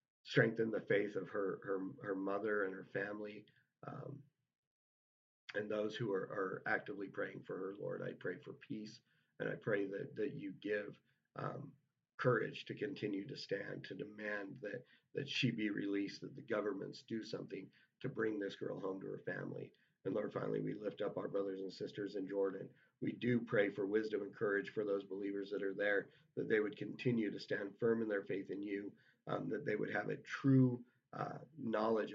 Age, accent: 50-69, American